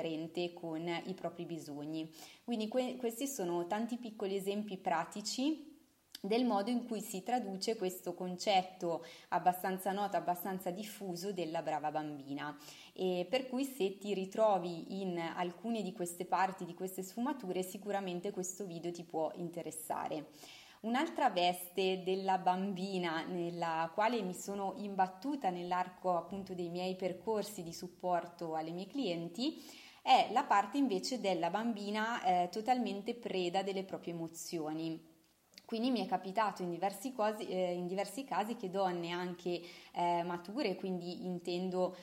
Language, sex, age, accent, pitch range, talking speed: Italian, female, 20-39, native, 175-210 Hz, 135 wpm